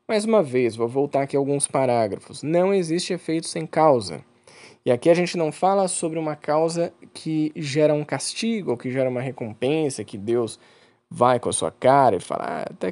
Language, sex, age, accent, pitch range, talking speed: Portuguese, male, 20-39, Brazilian, 130-195 Hz, 200 wpm